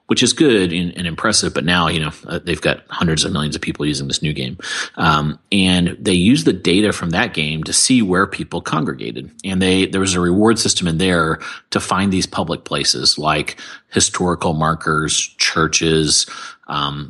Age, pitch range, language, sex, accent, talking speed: 30-49, 80-95 Hz, English, male, American, 185 wpm